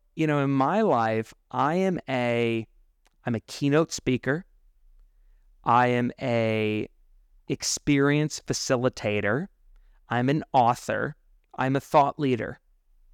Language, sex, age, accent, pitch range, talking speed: English, male, 30-49, American, 105-145 Hz, 110 wpm